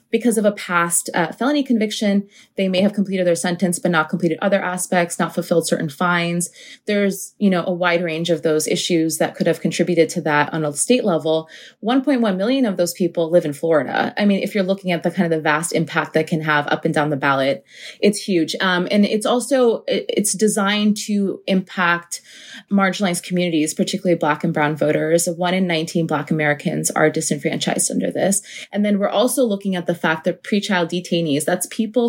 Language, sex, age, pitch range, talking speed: English, female, 20-39, 165-205 Hz, 205 wpm